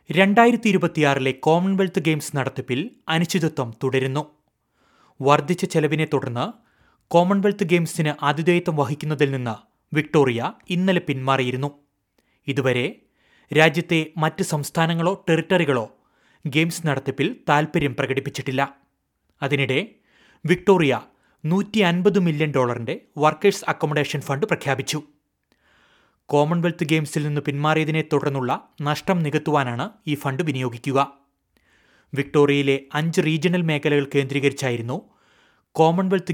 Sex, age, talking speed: male, 30-49, 85 wpm